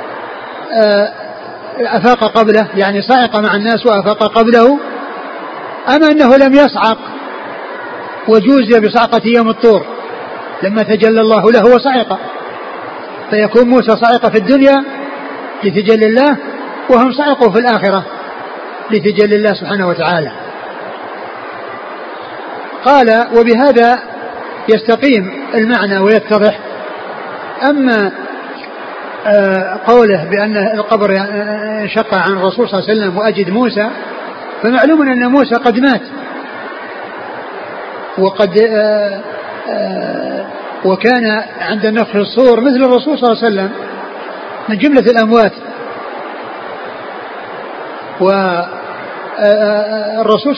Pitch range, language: 210-245 Hz, Arabic